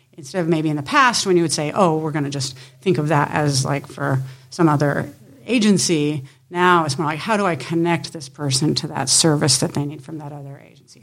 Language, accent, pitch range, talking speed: English, American, 145-170 Hz, 240 wpm